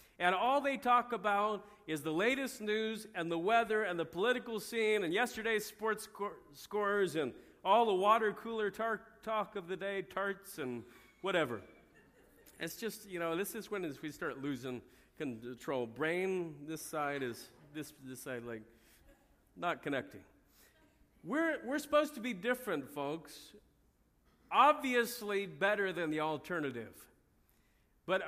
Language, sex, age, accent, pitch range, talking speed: English, male, 50-69, American, 140-210 Hz, 145 wpm